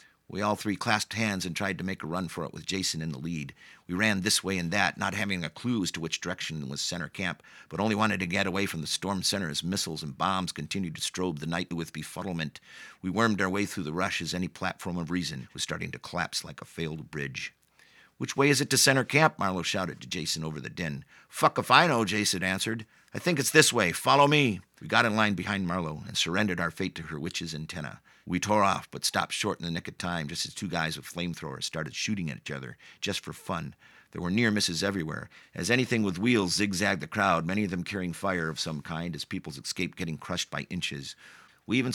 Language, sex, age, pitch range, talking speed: English, male, 50-69, 85-105 Hz, 245 wpm